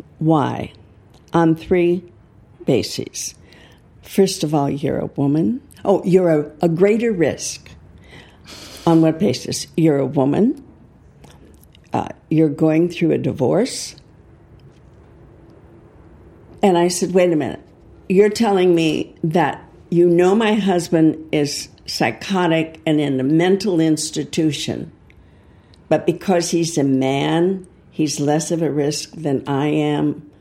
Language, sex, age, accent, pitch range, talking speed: English, female, 60-79, American, 145-175 Hz, 120 wpm